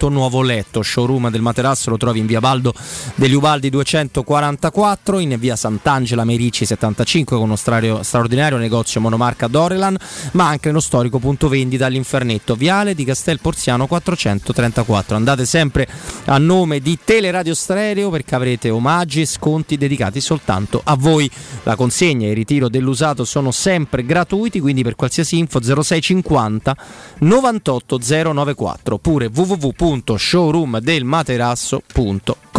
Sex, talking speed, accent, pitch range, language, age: male, 130 wpm, native, 120-165 Hz, Italian, 30-49